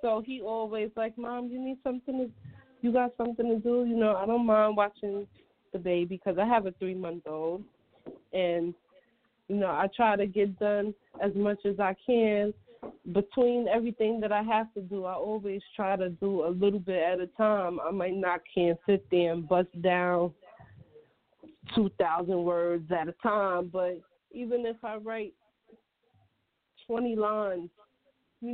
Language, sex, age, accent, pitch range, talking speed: English, female, 20-39, American, 180-220 Hz, 175 wpm